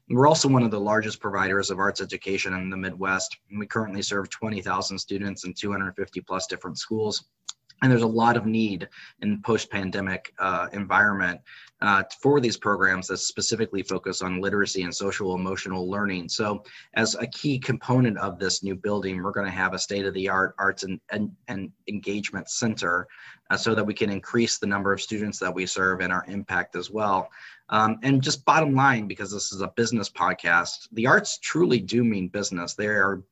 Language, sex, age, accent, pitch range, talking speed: English, male, 20-39, American, 95-110 Hz, 185 wpm